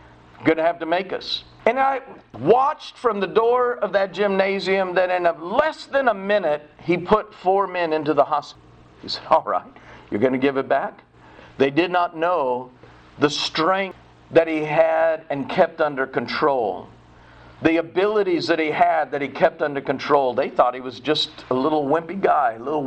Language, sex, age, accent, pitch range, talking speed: English, male, 50-69, American, 160-265 Hz, 190 wpm